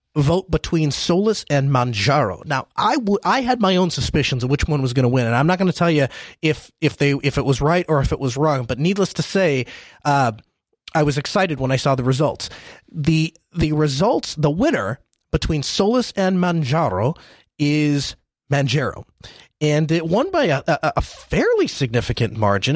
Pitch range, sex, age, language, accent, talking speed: 135-180 Hz, male, 30-49, English, American, 195 wpm